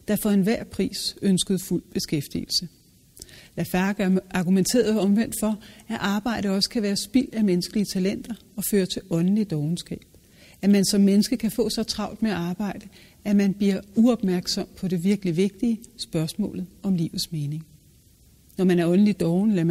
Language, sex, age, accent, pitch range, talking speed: Danish, female, 60-79, native, 180-205 Hz, 160 wpm